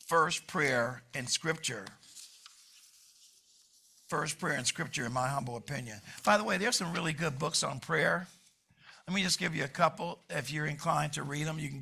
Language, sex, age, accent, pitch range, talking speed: English, male, 50-69, American, 135-160 Hz, 190 wpm